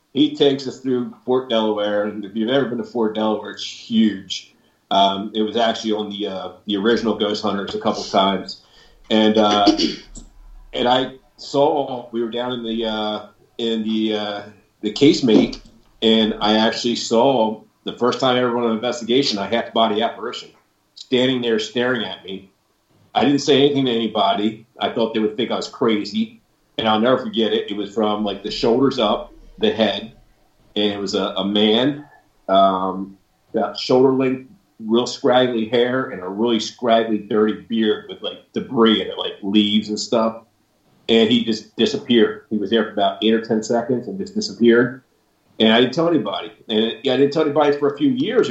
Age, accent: 40-59, American